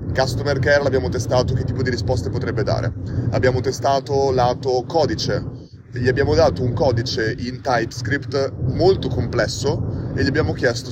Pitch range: 115-135 Hz